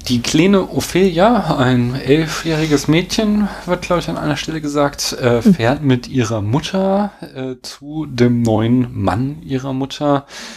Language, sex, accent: German, male, German